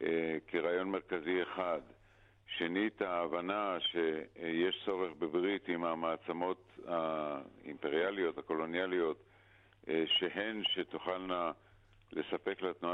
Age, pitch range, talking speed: 50-69, 80-95 Hz, 90 wpm